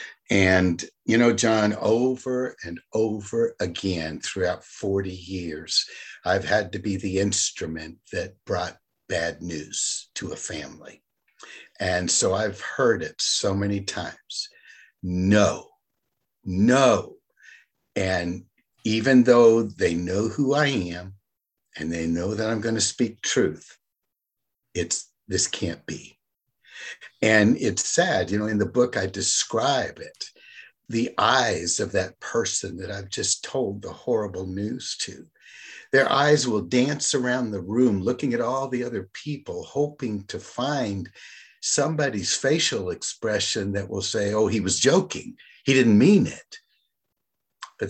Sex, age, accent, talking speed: male, 60-79, American, 140 wpm